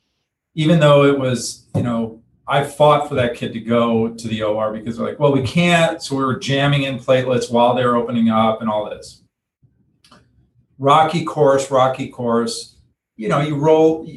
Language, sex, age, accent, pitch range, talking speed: English, male, 40-59, American, 115-150 Hz, 185 wpm